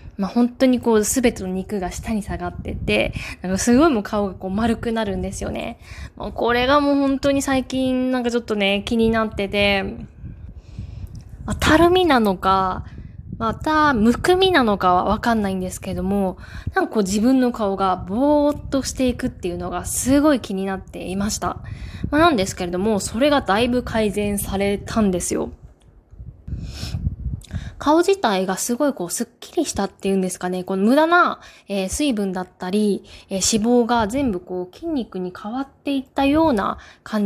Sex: female